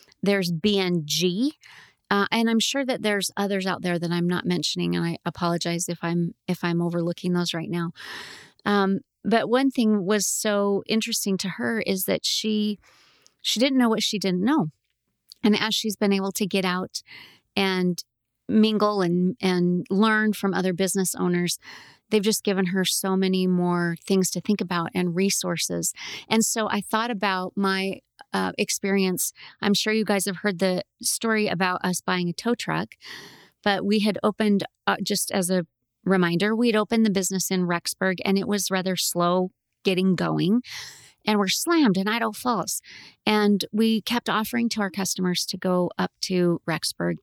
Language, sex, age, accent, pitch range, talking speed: English, female, 30-49, American, 180-215 Hz, 175 wpm